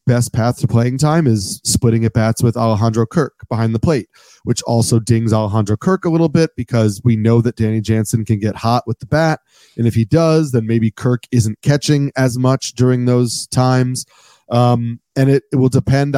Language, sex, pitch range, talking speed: English, male, 115-135 Hz, 205 wpm